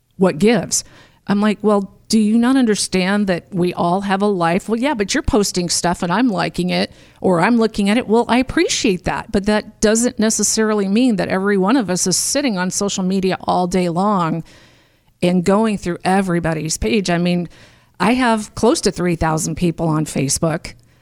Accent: American